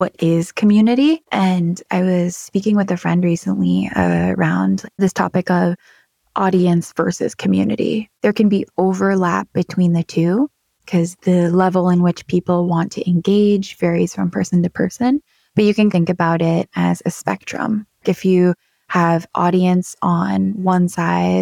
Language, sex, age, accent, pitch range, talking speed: English, female, 20-39, American, 170-195 Hz, 155 wpm